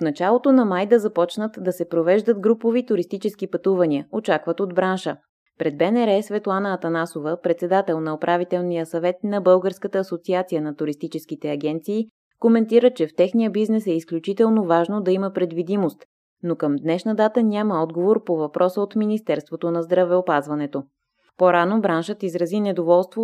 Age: 20-39